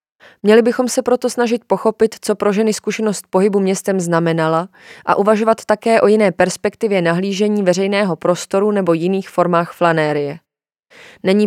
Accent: native